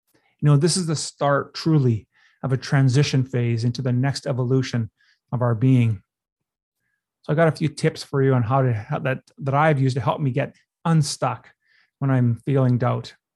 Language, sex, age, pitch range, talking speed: English, male, 30-49, 130-150 Hz, 190 wpm